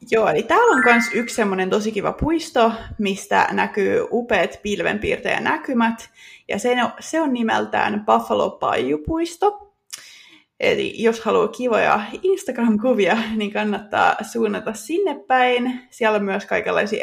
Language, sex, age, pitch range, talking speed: Finnish, female, 20-39, 215-280 Hz, 125 wpm